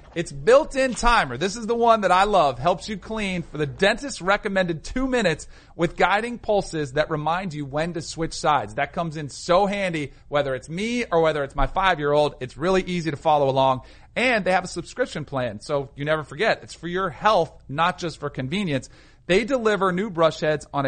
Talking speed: 215 wpm